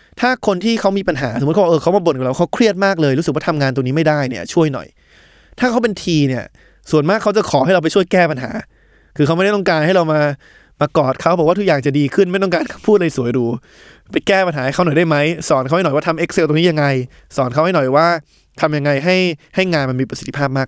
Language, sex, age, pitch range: Thai, male, 20-39, 135-185 Hz